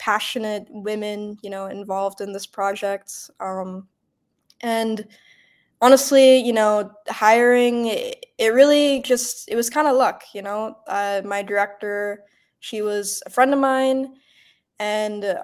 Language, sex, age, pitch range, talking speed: English, female, 10-29, 195-225 Hz, 130 wpm